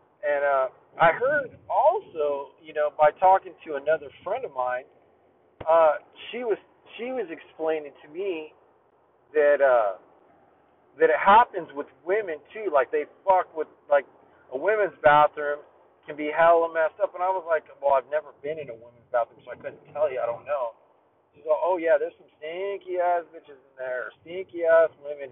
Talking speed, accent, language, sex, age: 180 wpm, American, English, male, 40-59